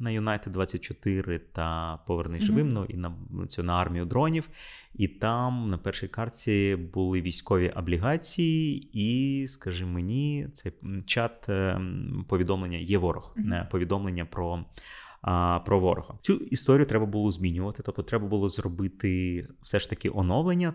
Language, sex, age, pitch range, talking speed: Ukrainian, male, 20-39, 90-125 Hz, 130 wpm